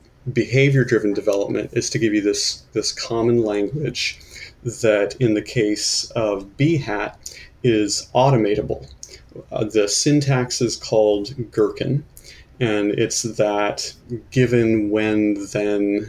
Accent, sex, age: American, male, 30-49